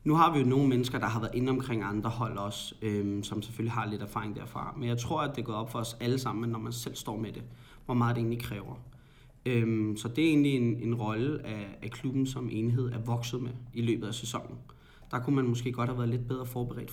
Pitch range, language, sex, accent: 120-150 Hz, Danish, male, native